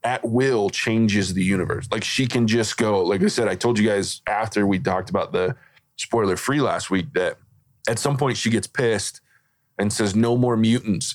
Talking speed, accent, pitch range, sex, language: 205 wpm, American, 100-120 Hz, male, English